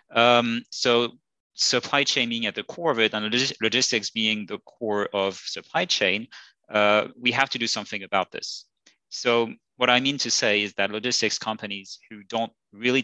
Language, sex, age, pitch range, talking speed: English, male, 30-49, 100-115 Hz, 185 wpm